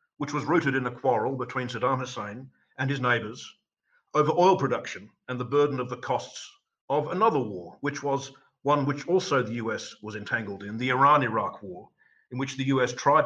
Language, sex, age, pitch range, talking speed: English, male, 50-69, 125-150 Hz, 190 wpm